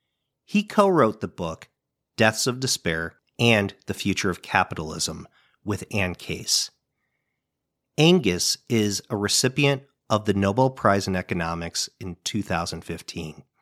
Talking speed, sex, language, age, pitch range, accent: 120 wpm, male, English, 40-59, 95-130 Hz, American